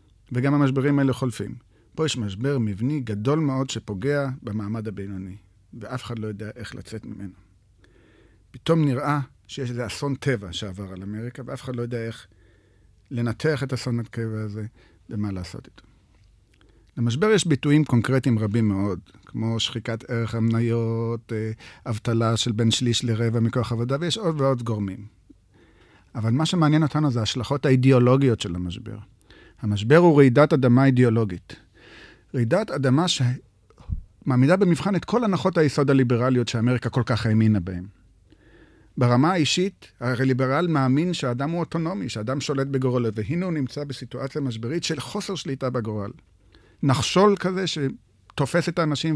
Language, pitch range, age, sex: Hebrew, 110-145 Hz, 50-69, male